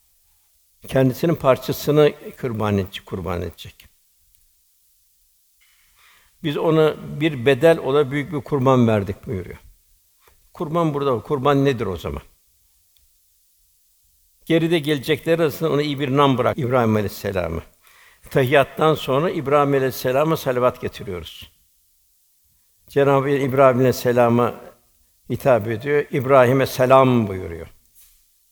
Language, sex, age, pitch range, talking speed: Turkish, male, 60-79, 100-145 Hz, 100 wpm